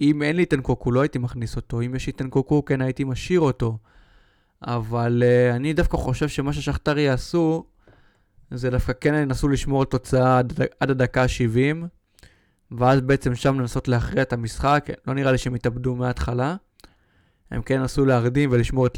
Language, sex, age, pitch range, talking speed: Hebrew, male, 20-39, 120-140 Hz, 175 wpm